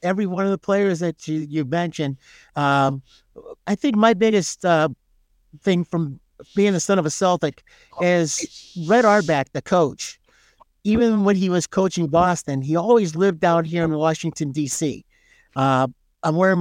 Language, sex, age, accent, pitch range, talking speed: English, male, 50-69, American, 155-195 Hz, 165 wpm